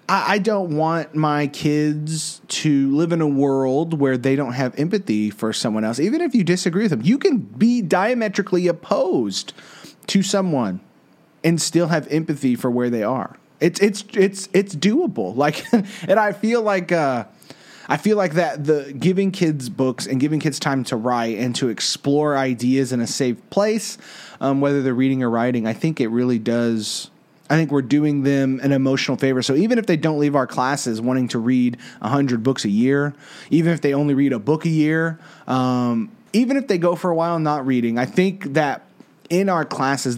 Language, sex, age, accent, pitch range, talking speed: English, male, 30-49, American, 130-165 Hz, 195 wpm